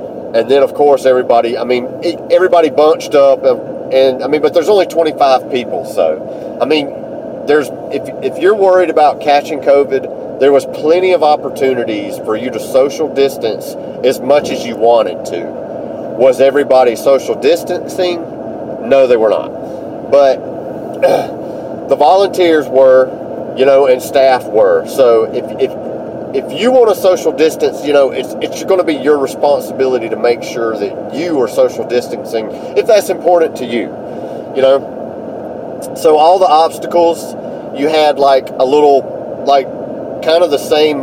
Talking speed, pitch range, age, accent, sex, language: 160 wpm, 135-180 Hz, 40-59, American, male, English